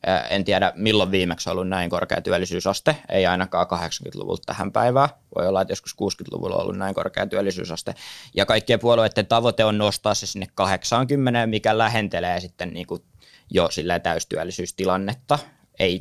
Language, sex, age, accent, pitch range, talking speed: Finnish, male, 20-39, native, 95-115 Hz, 155 wpm